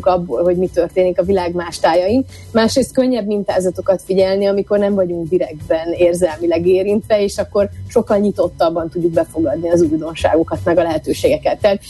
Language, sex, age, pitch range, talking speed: Hungarian, female, 30-49, 180-215 Hz, 145 wpm